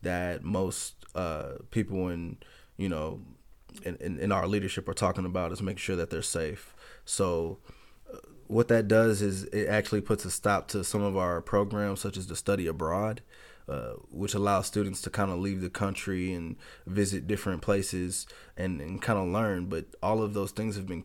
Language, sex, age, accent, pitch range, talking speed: English, male, 20-39, American, 90-105 Hz, 190 wpm